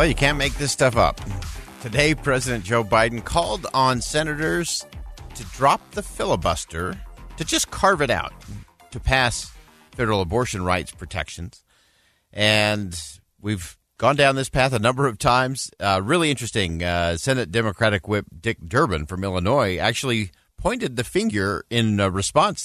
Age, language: 50-69, English